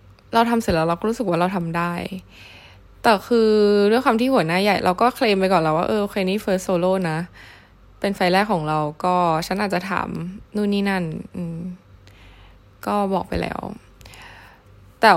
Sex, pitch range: female, 160-205 Hz